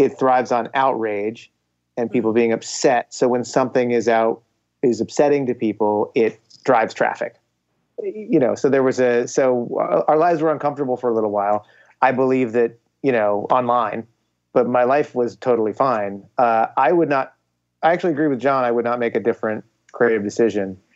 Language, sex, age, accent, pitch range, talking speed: English, male, 30-49, American, 110-130 Hz, 185 wpm